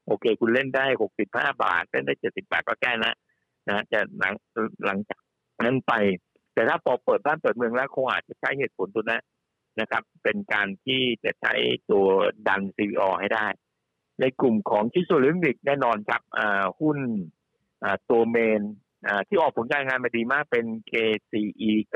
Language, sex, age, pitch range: Thai, male, 60-79, 105-135 Hz